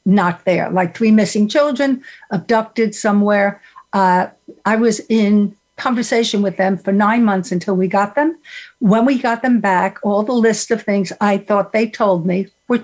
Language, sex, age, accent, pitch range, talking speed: English, female, 60-79, American, 195-240 Hz, 180 wpm